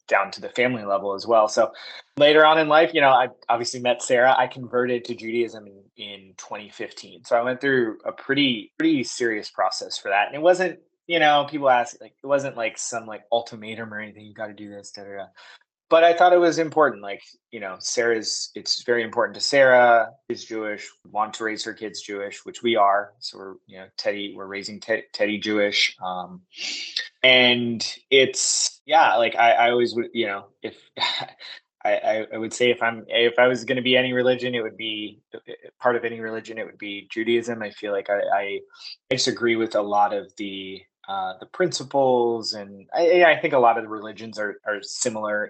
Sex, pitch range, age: male, 105-135 Hz, 20-39